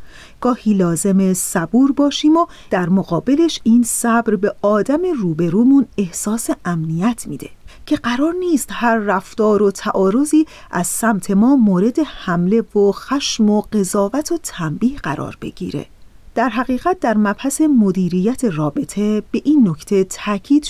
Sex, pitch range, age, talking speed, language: female, 195-280 Hz, 40-59, 130 wpm, Persian